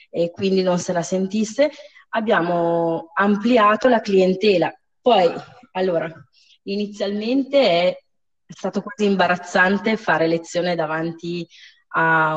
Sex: female